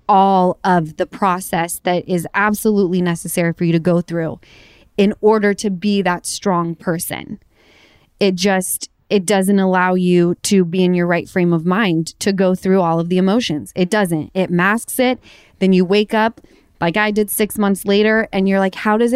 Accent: American